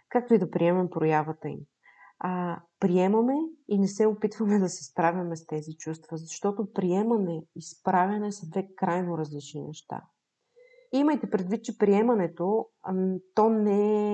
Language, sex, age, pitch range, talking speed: Bulgarian, female, 30-49, 170-215 Hz, 145 wpm